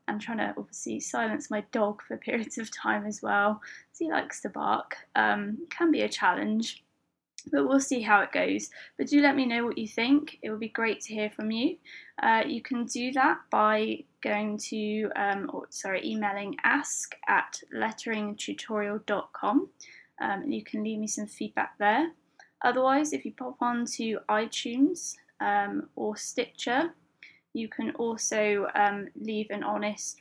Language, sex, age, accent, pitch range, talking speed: English, female, 20-39, British, 205-260 Hz, 170 wpm